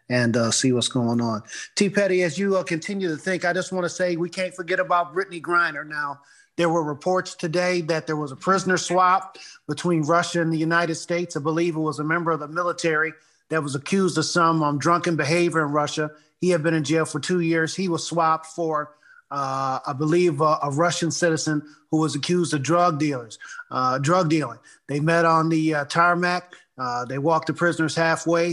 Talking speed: 210 wpm